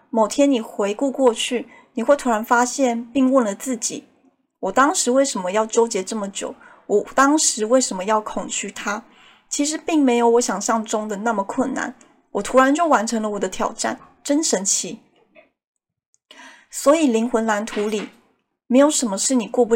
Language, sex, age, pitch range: Chinese, female, 30-49, 215-260 Hz